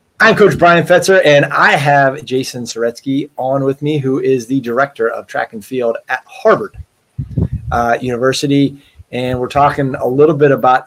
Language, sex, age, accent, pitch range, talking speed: English, male, 30-49, American, 135-160 Hz, 170 wpm